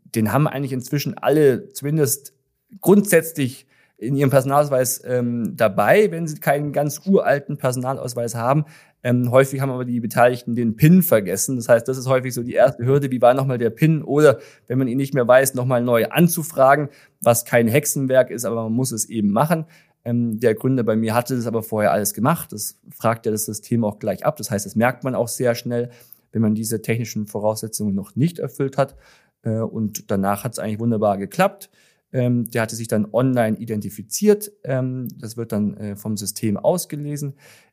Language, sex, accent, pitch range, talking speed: German, male, German, 115-140 Hz, 185 wpm